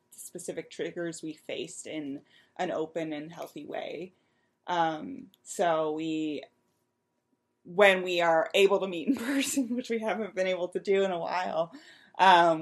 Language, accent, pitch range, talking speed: English, American, 150-180 Hz, 150 wpm